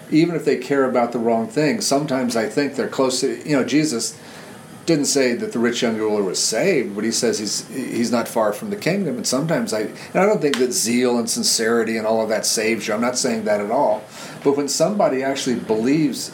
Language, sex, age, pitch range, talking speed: English, male, 40-59, 120-150 Hz, 235 wpm